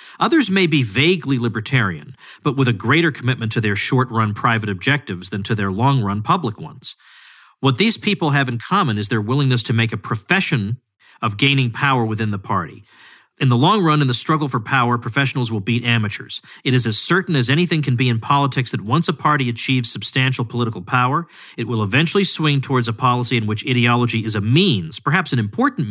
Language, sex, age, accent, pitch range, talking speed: English, male, 40-59, American, 110-140 Hz, 200 wpm